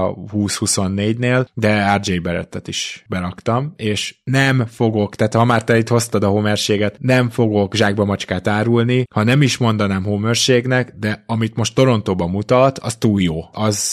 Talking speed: 155 wpm